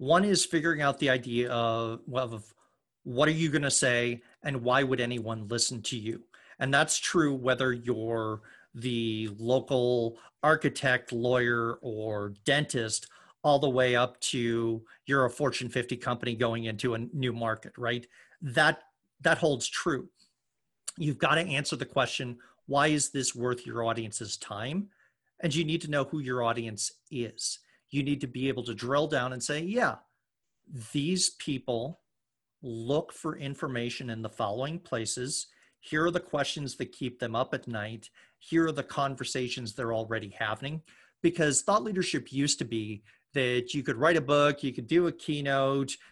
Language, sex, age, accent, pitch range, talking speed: English, male, 40-59, American, 120-145 Hz, 165 wpm